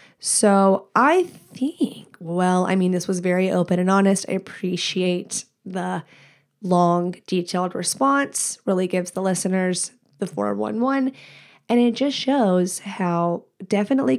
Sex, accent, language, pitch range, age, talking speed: female, American, English, 180-215 Hz, 20-39, 125 wpm